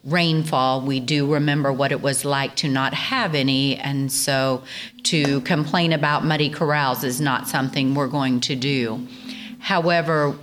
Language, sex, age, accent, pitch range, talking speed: English, female, 50-69, American, 135-165 Hz, 155 wpm